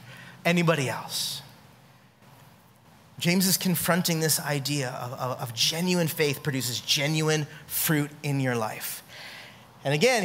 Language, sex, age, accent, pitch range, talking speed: English, male, 30-49, American, 150-215 Hz, 115 wpm